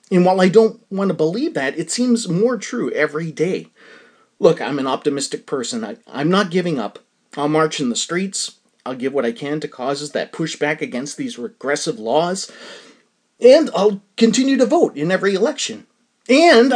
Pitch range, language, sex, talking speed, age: 160-235 Hz, English, male, 180 wpm, 30-49